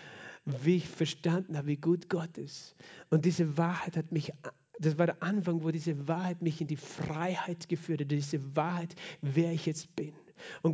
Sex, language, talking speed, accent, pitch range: male, German, 185 wpm, German, 160-190 Hz